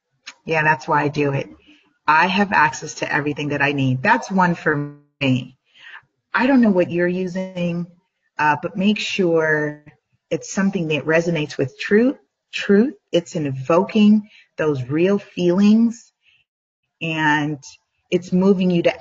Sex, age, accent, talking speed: female, 30-49, American, 140 wpm